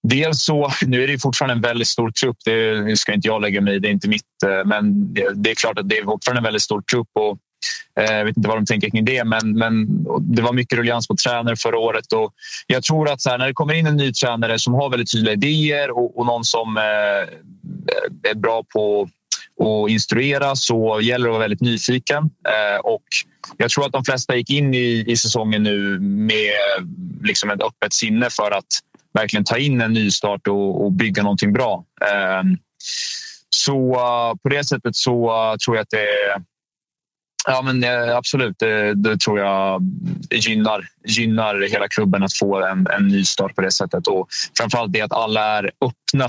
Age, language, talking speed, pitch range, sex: 20-39, Swedish, 200 wpm, 105-140 Hz, male